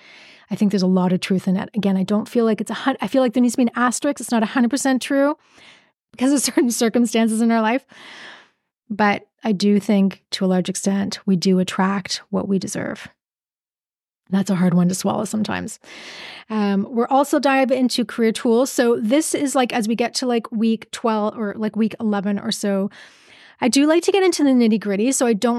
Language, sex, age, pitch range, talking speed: English, female, 30-49, 200-245 Hz, 225 wpm